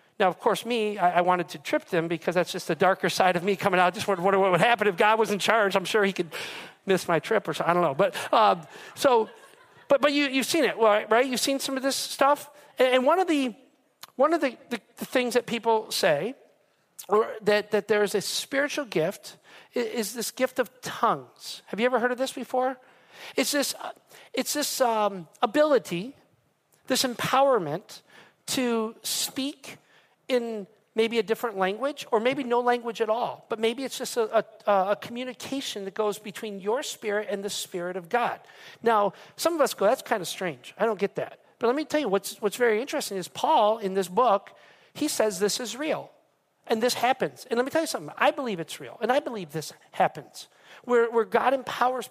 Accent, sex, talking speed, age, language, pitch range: American, male, 210 wpm, 50-69, English, 200-255 Hz